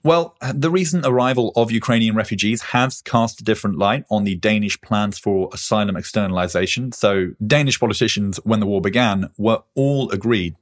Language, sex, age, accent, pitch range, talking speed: English, male, 30-49, British, 95-115 Hz, 165 wpm